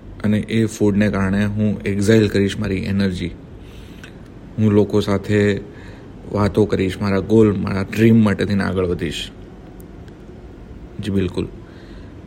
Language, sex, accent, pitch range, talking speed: Gujarati, male, native, 95-105 Hz, 85 wpm